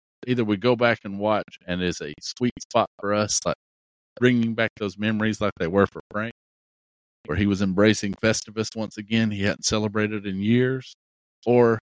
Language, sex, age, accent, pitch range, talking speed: English, male, 50-69, American, 85-105 Hz, 180 wpm